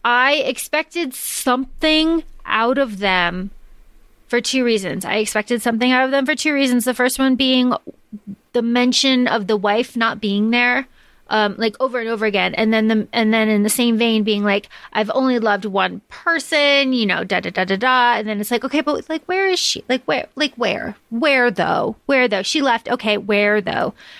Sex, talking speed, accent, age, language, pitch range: female, 205 wpm, American, 30-49, English, 215-265 Hz